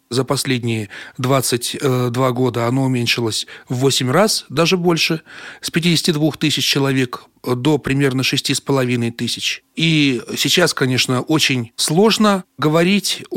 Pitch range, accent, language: 130-165 Hz, native, Russian